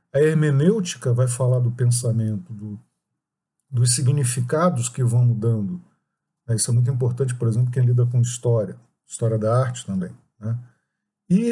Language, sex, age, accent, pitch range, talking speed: English, male, 50-69, Brazilian, 120-170 Hz, 135 wpm